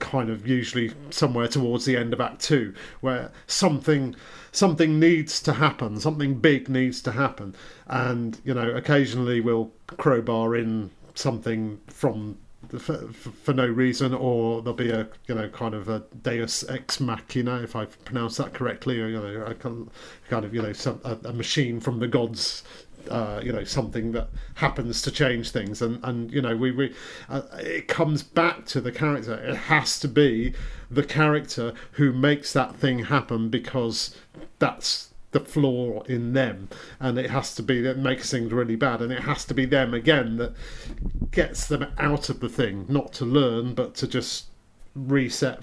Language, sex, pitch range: English, male, 115-140 Hz